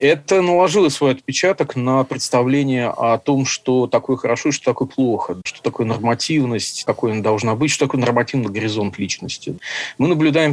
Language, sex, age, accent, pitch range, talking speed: Russian, male, 40-59, native, 115-145 Hz, 160 wpm